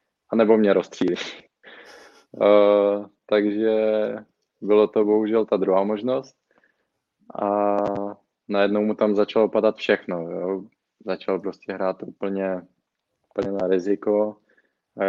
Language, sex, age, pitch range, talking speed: Czech, male, 20-39, 100-110 Hz, 105 wpm